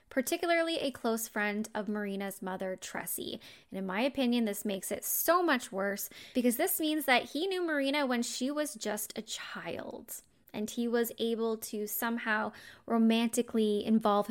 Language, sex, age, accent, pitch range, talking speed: English, female, 10-29, American, 210-270 Hz, 165 wpm